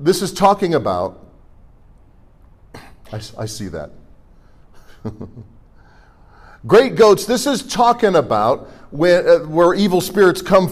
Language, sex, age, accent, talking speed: English, male, 50-69, American, 110 wpm